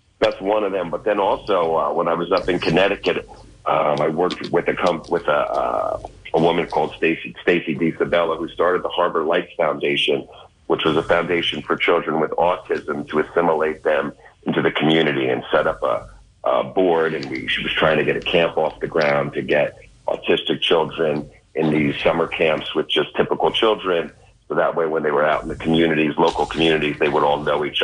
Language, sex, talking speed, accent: English, male, 205 wpm, American